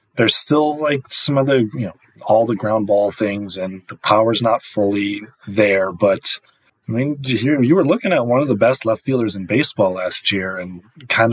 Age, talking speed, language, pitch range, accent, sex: 20-39, 205 wpm, English, 105-130 Hz, American, male